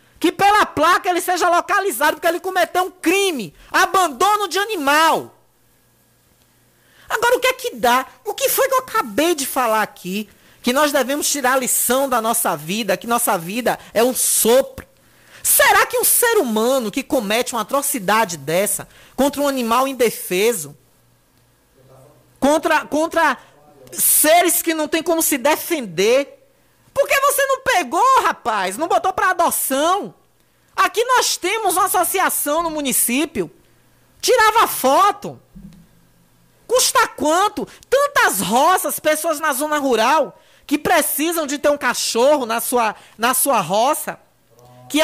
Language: Portuguese